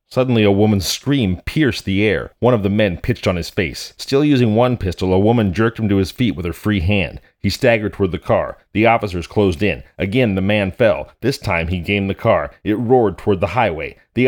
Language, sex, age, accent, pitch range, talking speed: English, male, 30-49, American, 90-115 Hz, 230 wpm